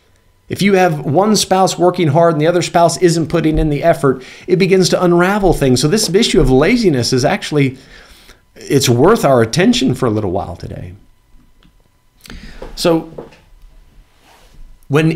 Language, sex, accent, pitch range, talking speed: English, male, American, 105-155 Hz, 155 wpm